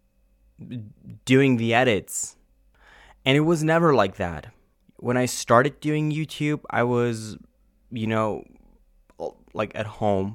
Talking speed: 120 wpm